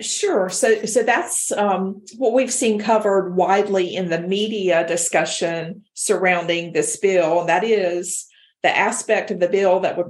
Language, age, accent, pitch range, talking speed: English, 50-69, American, 175-205 Hz, 160 wpm